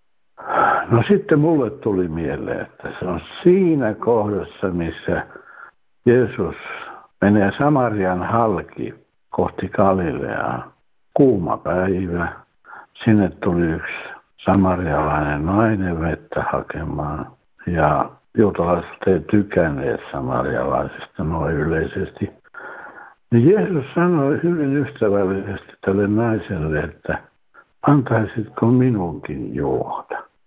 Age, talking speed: 60-79, 85 wpm